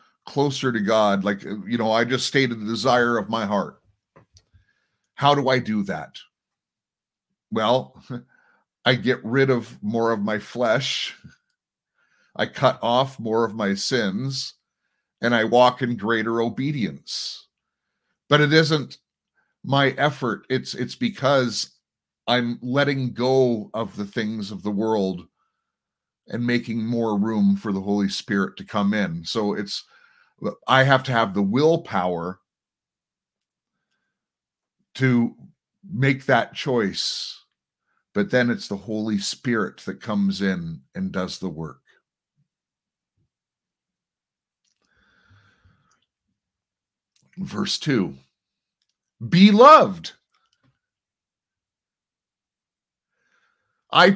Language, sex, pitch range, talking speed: English, male, 105-135 Hz, 110 wpm